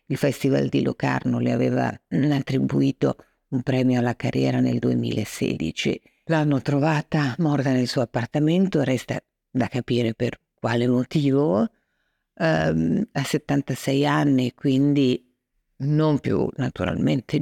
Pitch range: 125-150 Hz